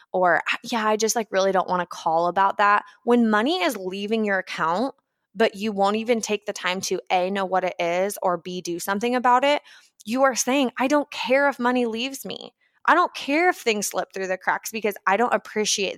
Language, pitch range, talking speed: English, 180-245 Hz, 225 wpm